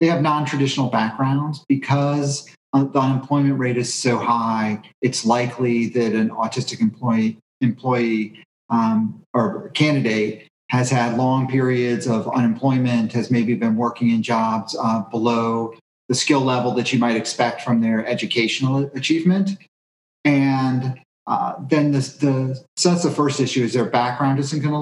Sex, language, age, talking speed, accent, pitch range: male, English, 40-59, 140 wpm, American, 120-150 Hz